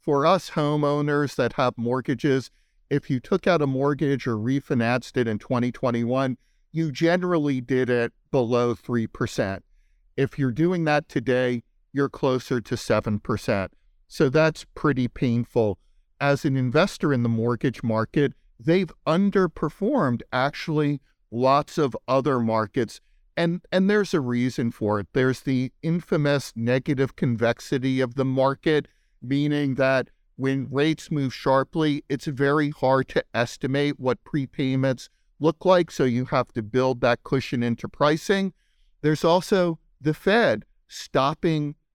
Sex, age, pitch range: male, 50-69, 120-150 Hz